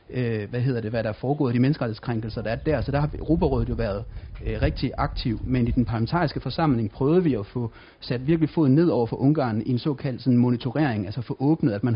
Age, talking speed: 30-49, 240 wpm